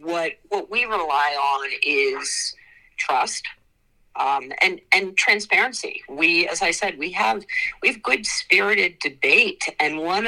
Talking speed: 140 wpm